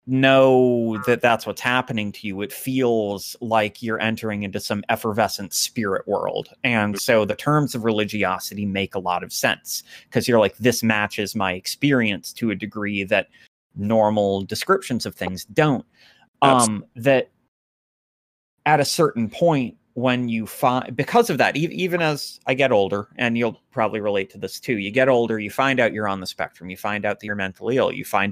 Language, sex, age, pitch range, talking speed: English, male, 30-49, 105-135 Hz, 185 wpm